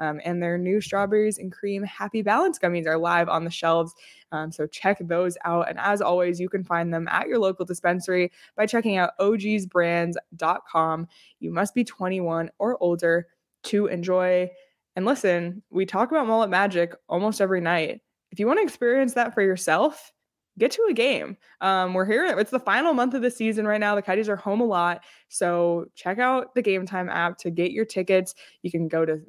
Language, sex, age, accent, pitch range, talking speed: English, female, 20-39, American, 170-210 Hz, 200 wpm